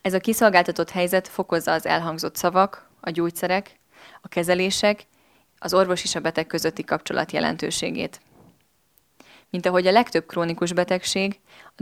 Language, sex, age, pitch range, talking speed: Hungarian, female, 20-39, 170-195 Hz, 135 wpm